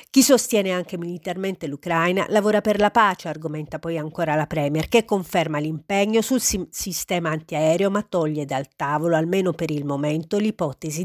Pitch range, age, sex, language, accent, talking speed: 155-215 Hz, 40-59, female, Italian, native, 160 wpm